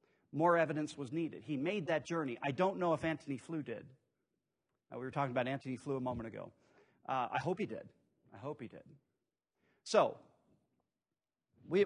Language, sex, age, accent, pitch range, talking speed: English, male, 40-59, American, 145-195 Hz, 180 wpm